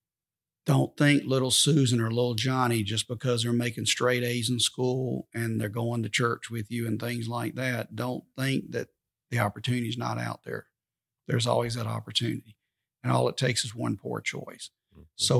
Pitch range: 110-125 Hz